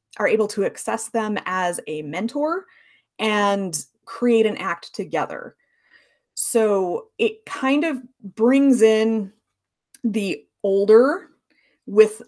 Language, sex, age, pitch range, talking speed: English, female, 20-39, 190-245 Hz, 105 wpm